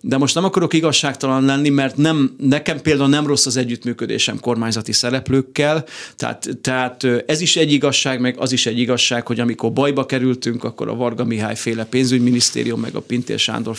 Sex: male